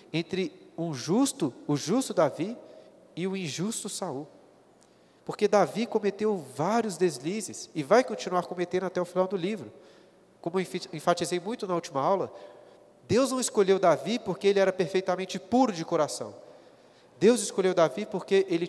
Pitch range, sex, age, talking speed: 160-195 Hz, male, 30-49, 150 wpm